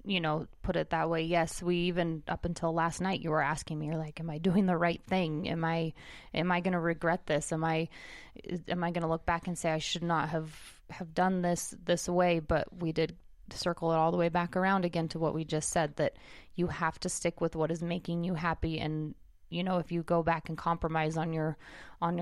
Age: 20-39